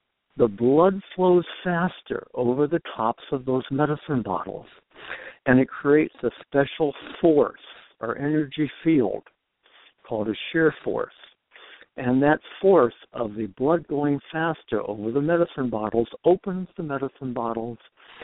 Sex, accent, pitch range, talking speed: male, American, 115-145 Hz, 130 wpm